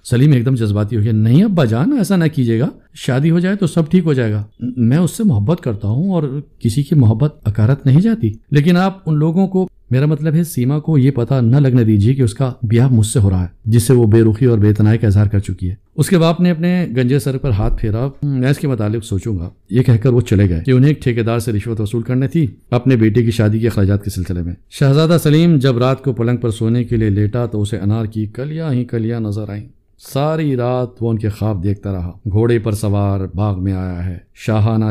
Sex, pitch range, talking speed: male, 105-135 Hz, 220 wpm